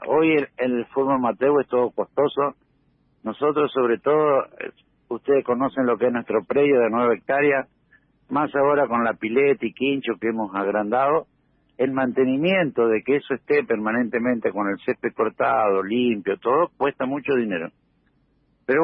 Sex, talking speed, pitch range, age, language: male, 160 wpm, 115-140 Hz, 70-89, Spanish